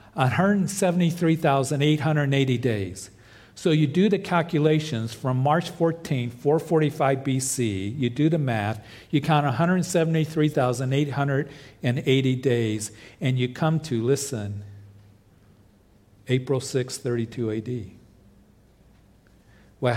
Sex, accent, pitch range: male, American, 110-135 Hz